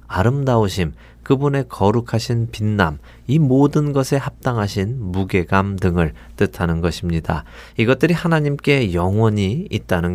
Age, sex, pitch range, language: 40-59, male, 90-130 Hz, Korean